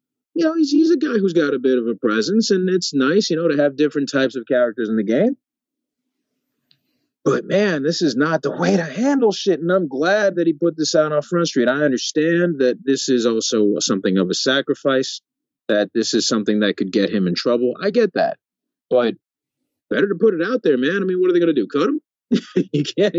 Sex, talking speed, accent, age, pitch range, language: male, 235 wpm, American, 30-49, 130-190 Hz, English